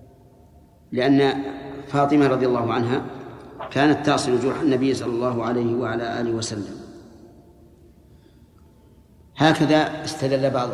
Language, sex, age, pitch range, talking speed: Arabic, male, 40-59, 130-160 Hz, 100 wpm